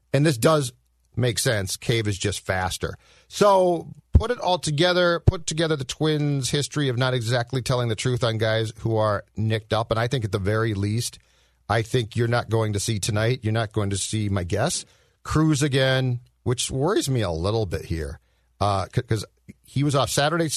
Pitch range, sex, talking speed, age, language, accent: 110-140 Hz, male, 200 wpm, 50-69, English, American